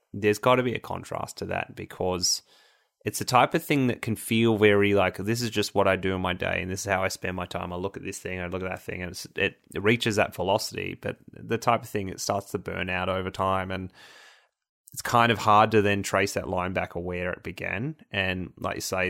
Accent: Australian